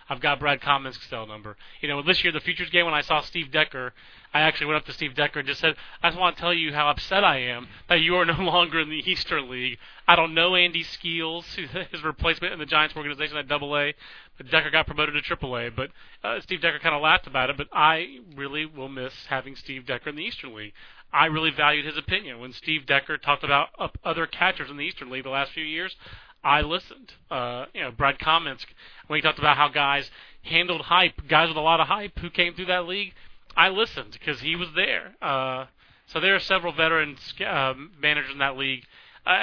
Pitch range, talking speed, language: 135-165 Hz, 230 wpm, English